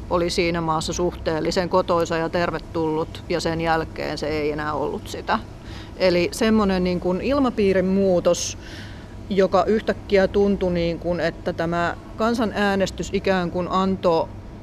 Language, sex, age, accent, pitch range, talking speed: Finnish, female, 30-49, native, 160-185 Hz, 115 wpm